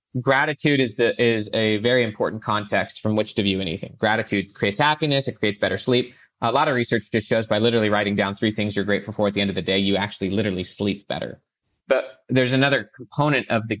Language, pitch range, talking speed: English, 105-130 Hz, 225 wpm